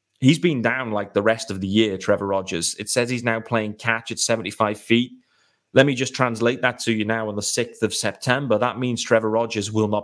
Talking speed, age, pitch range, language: 235 wpm, 30-49, 100-125 Hz, English